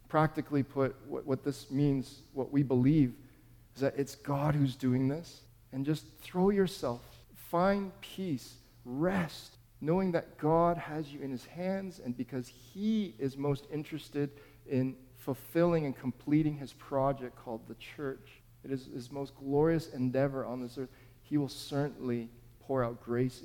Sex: male